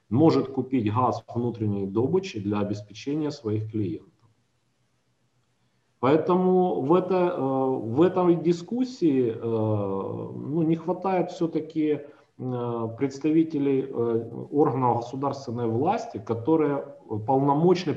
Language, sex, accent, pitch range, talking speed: Ukrainian, male, native, 120-155 Hz, 75 wpm